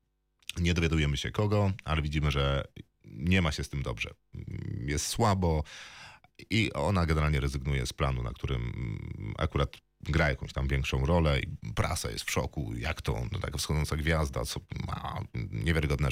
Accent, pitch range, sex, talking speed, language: native, 75-100 Hz, male, 155 wpm, Polish